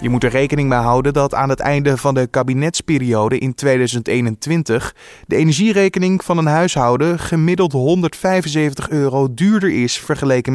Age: 20-39